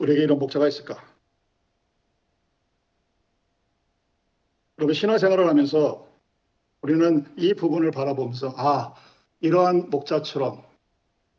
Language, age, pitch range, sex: Korean, 50-69, 140-180 Hz, male